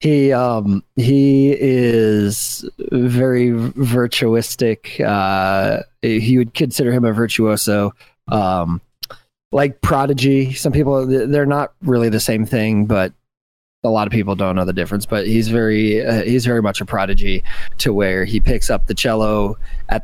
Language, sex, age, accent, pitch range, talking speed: English, male, 20-39, American, 105-130 Hz, 155 wpm